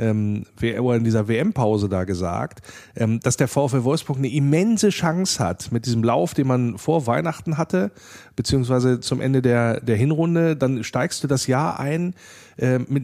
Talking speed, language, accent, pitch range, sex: 150 wpm, German, German, 115-155 Hz, male